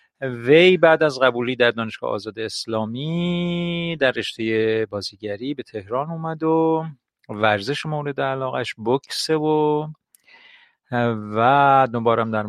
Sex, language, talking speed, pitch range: male, Persian, 110 wpm, 115-155 Hz